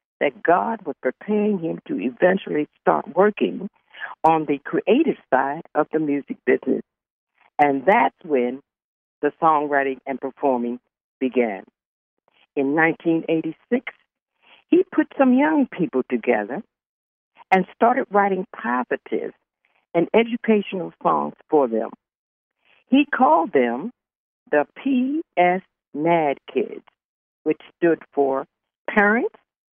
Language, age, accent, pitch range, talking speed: English, 60-79, American, 145-215 Hz, 105 wpm